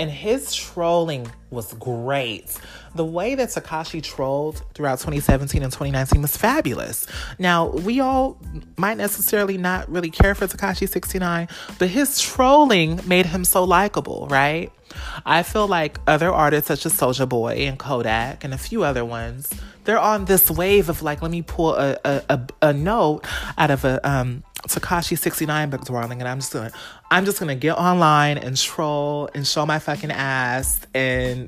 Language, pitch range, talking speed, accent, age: English, 130-170 Hz, 175 wpm, American, 30-49